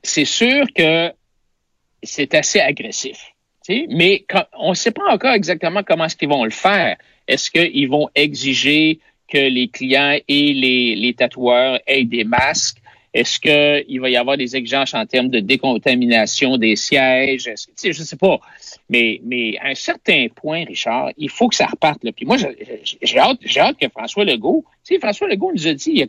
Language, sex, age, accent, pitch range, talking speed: French, male, 60-79, Canadian, 130-200 Hz, 195 wpm